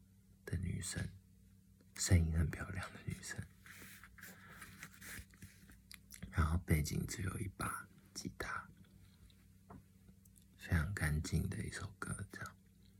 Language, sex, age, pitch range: Chinese, male, 50-69, 85-95 Hz